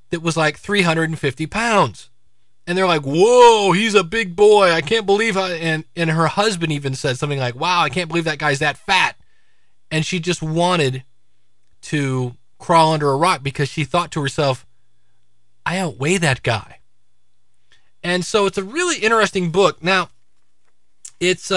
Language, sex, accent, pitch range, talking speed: English, male, American, 130-195 Hz, 165 wpm